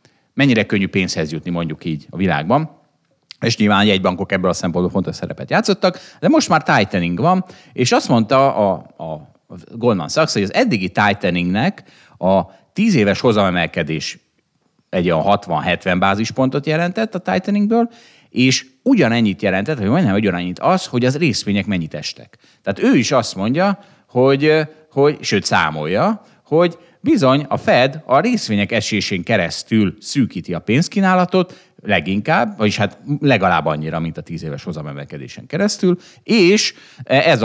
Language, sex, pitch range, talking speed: Hungarian, male, 95-150 Hz, 145 wpm